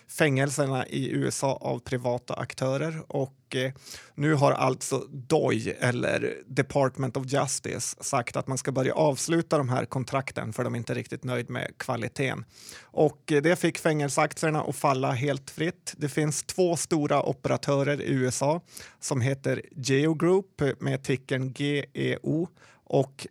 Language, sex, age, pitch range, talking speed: Swedish, male, 30-49, 130-150 Hz, 145 wpm